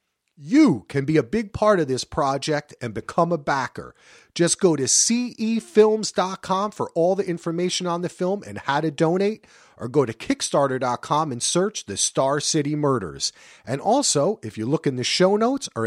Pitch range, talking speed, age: 145-220 Hz, 180 wpm, 40-59